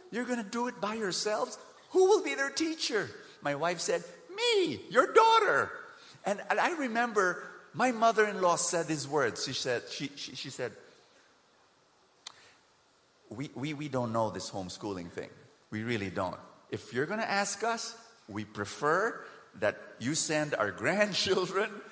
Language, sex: English, male